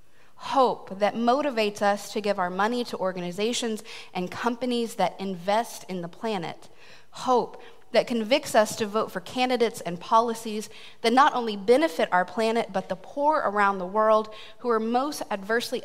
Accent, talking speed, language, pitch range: American, 165 wpm, English, 190-235 Hz